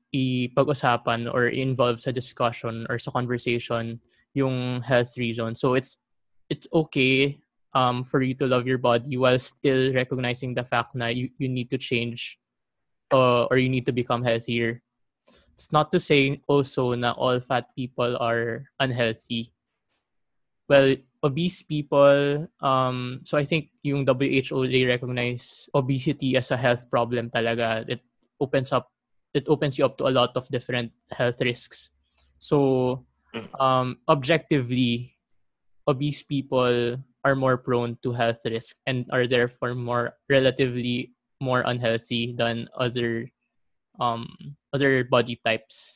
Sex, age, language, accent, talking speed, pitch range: male, 20-39, Filipino, native, 140 wpm, 120-140 Hz